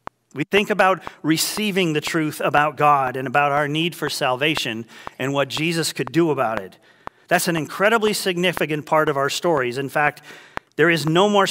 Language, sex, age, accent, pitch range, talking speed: English, male, 40-59, American, 140-180 Hz, 180 wpm